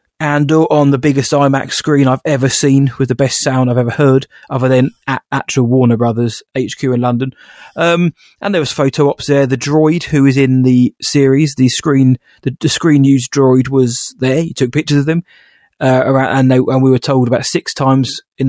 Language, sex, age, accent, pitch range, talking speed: English, male, 20-39, British, 125-140 Hz, 205 wpm